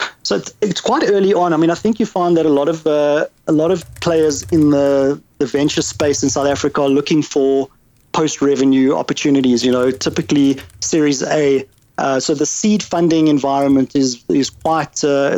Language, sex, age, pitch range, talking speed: English, male, 30-49, 130-155 Hz, 190 wpm